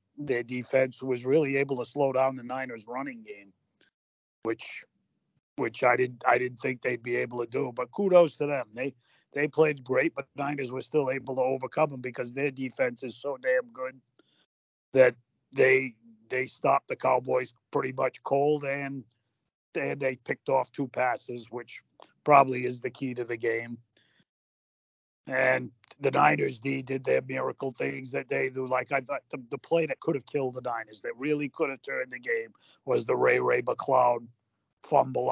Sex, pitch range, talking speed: male, 120-140 Hz, 180 wpm